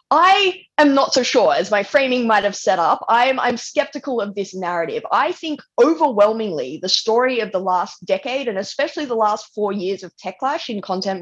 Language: English